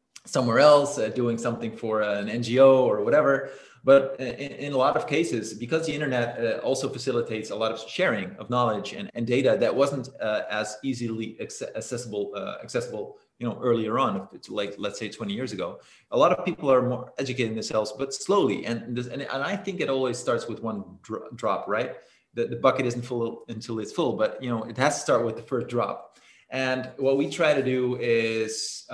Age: 30-49